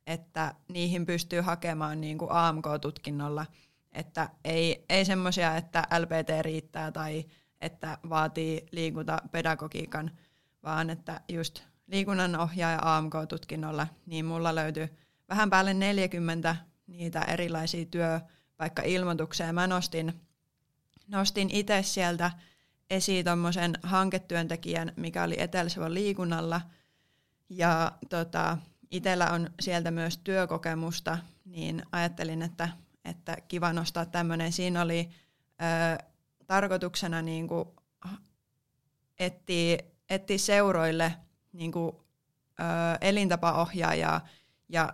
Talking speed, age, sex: 95 wpm, 20-39, female